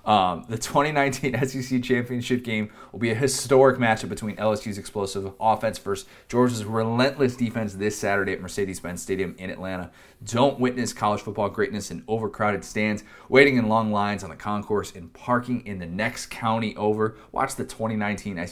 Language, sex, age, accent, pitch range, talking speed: English, male, 30-49, American, 95-125 Hz, 165 wpm